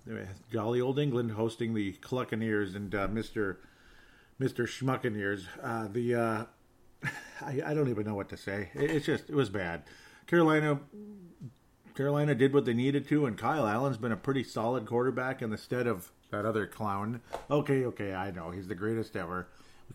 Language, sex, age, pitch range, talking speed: English, male, 40-59, 110-140 Hz, 175 wpm